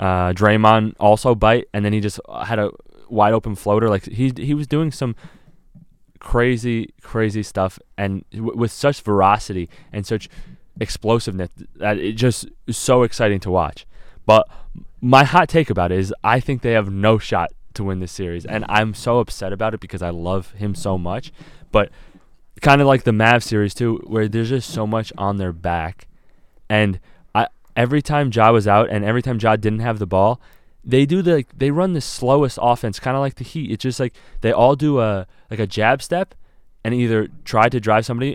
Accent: American